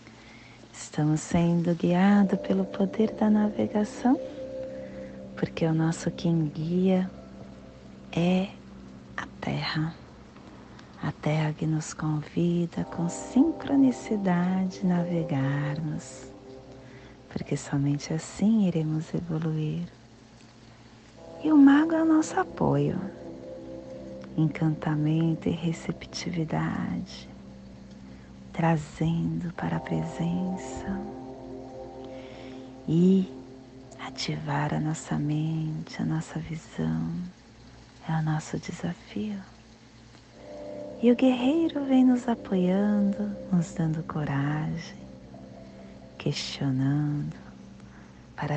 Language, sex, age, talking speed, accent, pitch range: Portuguese, female, 40-59, 80 wpm, Brazilian, 115-175 Hz